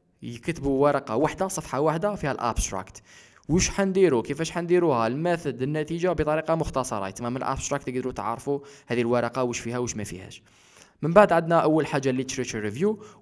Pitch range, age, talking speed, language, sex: 115-160 Hz, 20-39, 150 wpm, Arabic, male